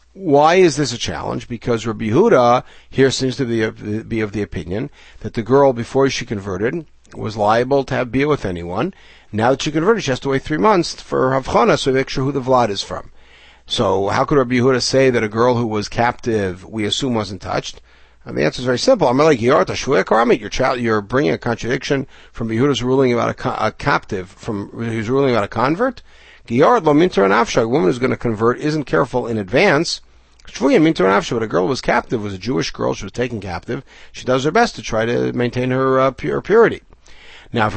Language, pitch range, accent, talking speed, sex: English, 110-135 Hz, American, 205 wpm, male